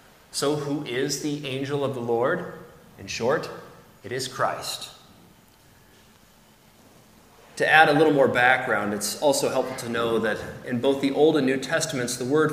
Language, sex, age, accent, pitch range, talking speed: English, male, 30-49, American, 125-165 Hz, 165 wpm